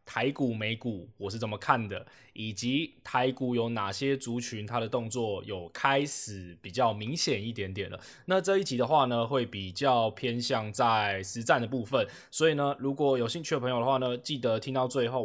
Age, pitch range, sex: 20-39, 110-135 Hz, male